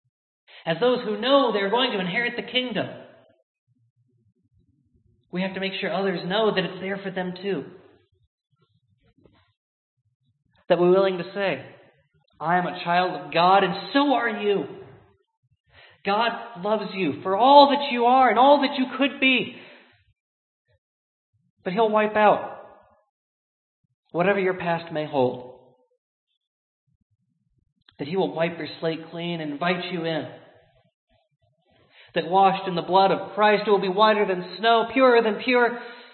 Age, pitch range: 40-59, 160-215 Hz